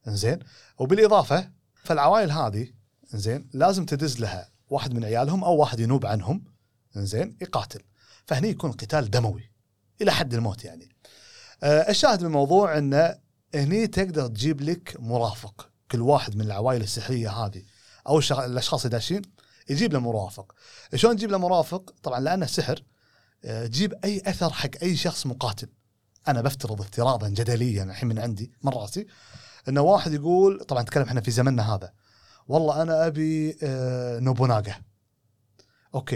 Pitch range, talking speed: 115-155 Hz, 135 wpm